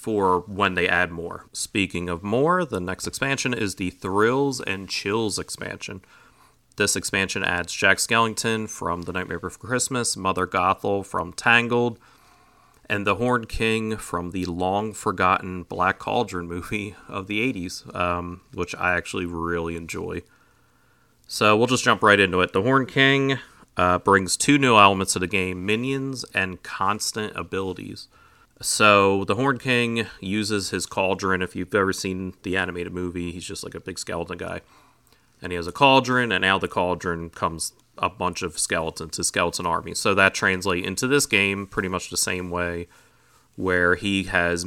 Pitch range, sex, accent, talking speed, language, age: 90-115 Hz, male, American, 170 wpm, English, 30-49